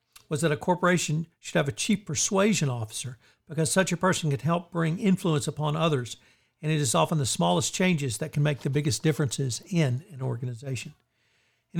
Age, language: 60-79, English